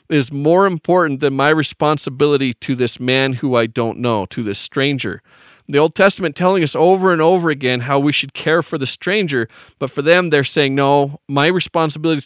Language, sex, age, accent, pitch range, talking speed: English, male, 40-59, American, 140-190 Hz, 195 wpm